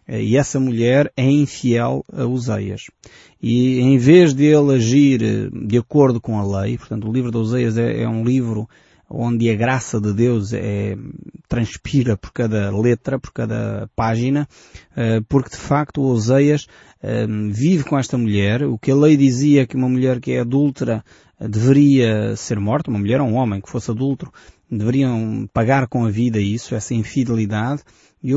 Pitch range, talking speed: 110-135 Hz, 170 wpm